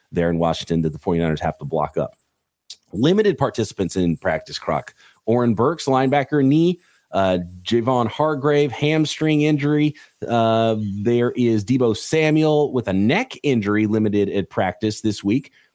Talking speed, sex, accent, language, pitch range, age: 145 wpm, male, American, English, 105-150 Hz, 30-49